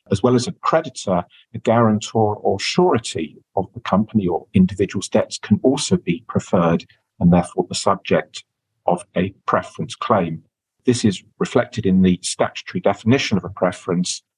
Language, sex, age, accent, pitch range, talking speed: English, male, 50-69, British, 95-115 Hz, 155 wpm